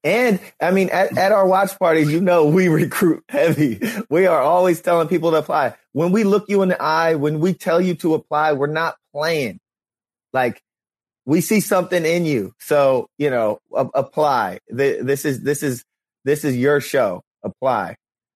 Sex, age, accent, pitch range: male, 30-49, American, 120-150 Hz